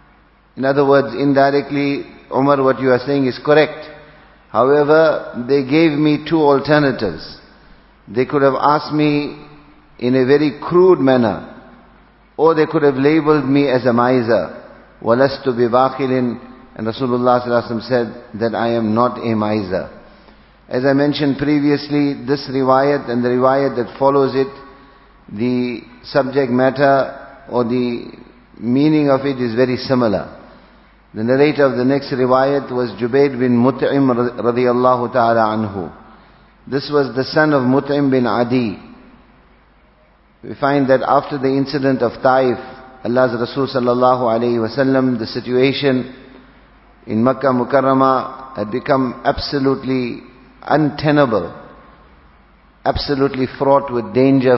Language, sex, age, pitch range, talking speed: English, male, 50-69, 120-140 Hz, 130 wpm